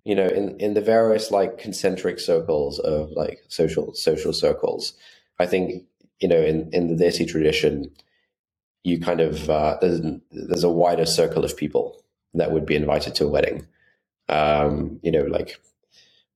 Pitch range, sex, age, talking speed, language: 75-95 Hz, male, 20-39, 165 wpm, English